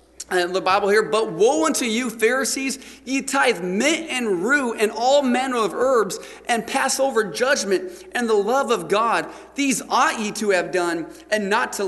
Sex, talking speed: male, 185 wpm